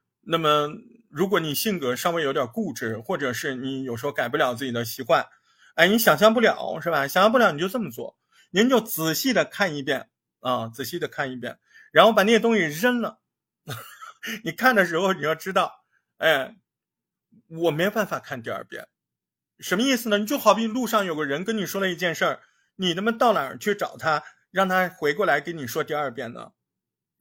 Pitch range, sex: 150-225 Hz, male